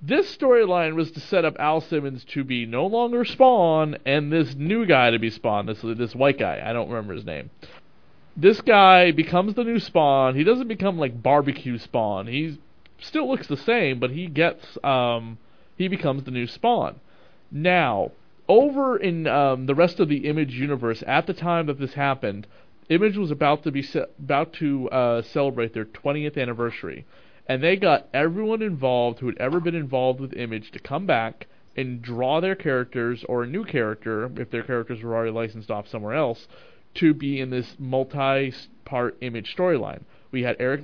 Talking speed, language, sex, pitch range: 185 wpm, English, male, 120-160 Hz